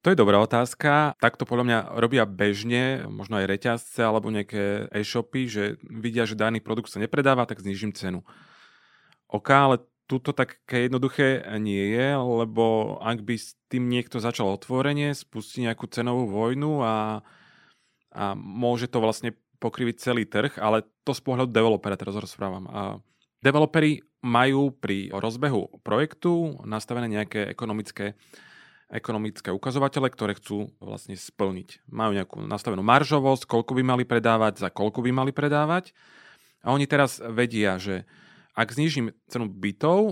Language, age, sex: Slovak, 30-49, male